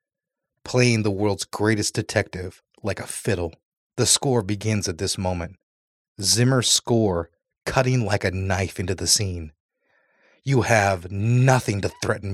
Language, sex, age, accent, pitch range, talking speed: English, male, 30-49, American, 95-110 Hz, 135 wpm